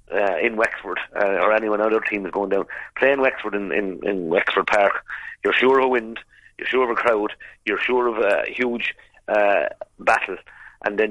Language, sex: English, male